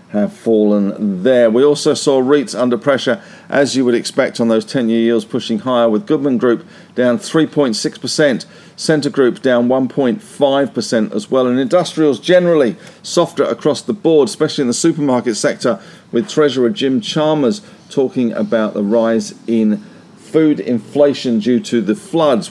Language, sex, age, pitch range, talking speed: English, male, 50-69, 115-160 Hz, 150 wpm